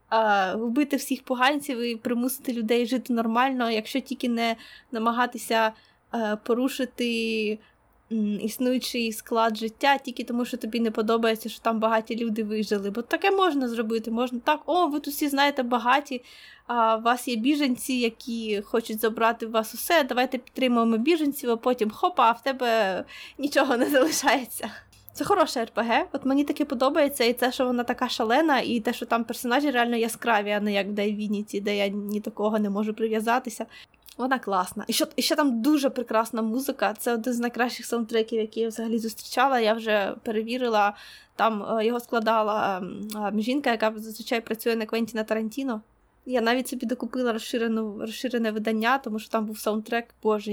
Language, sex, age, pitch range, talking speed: Ukrainian, female, 20-39, 220-260 Hz, 165 wpm